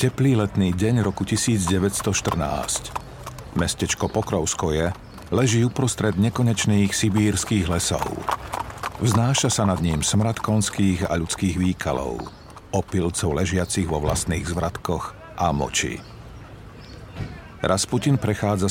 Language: Slovak